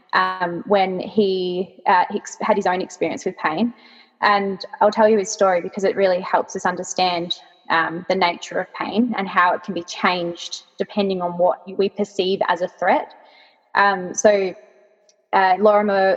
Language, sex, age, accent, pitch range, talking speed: English, female, 20-39, Australian, 185-210 Hz, 170 wpm